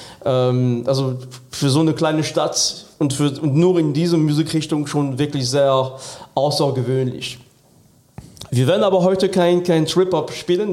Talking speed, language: 140 wpm, German